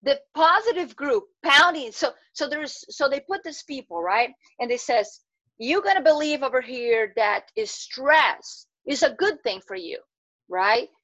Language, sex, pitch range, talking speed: English, female, 245-345 Hz, 175 wpm